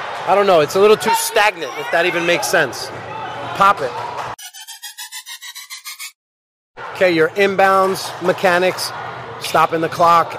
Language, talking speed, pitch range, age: English, 125 wpm, 175-225 Hz, 30-49